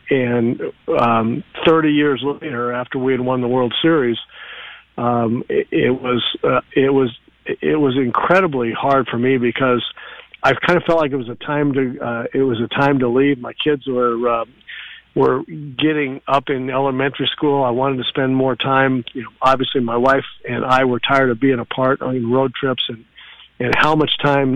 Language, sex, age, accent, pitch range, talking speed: English, male, 50-69, American, 125-145 Hz, 195 wpm